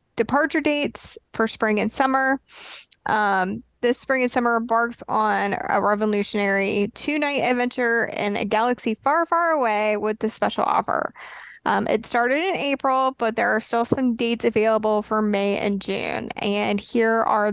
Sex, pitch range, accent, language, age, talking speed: female, 220-270 Hz, American, English, 20-39, 160 wpm